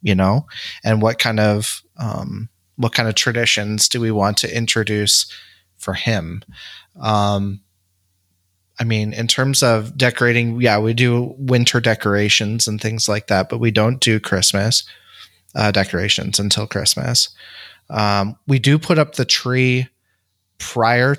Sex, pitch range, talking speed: male, 100-120 Hz, 145 wpm